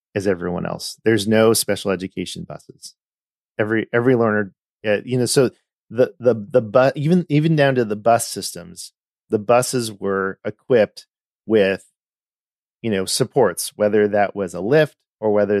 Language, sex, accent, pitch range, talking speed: English, male, American, 95-115 Hz, 160 wpm